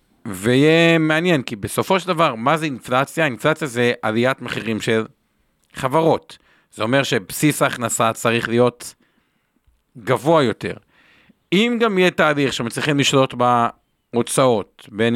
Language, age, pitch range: Hebrew, 50-69, 120-155 Hz